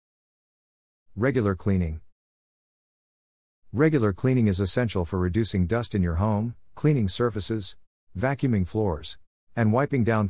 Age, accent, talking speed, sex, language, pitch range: 50-69, American, 110 wpm, male, English, 85-115 Hz